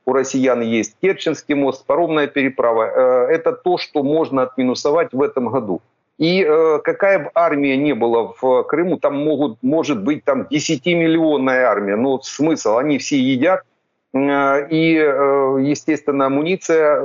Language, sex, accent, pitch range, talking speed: Ukrainian, male, native, 130-160 Hz, 135 wpm